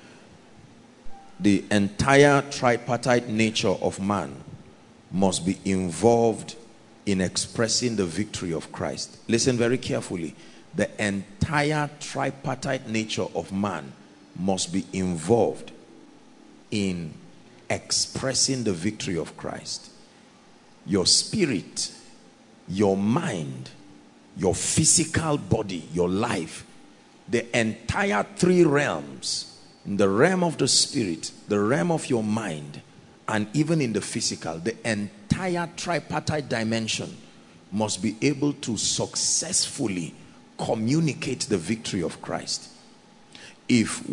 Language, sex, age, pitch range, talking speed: English, male, 50-69, 105-150 Hz, 105 wpm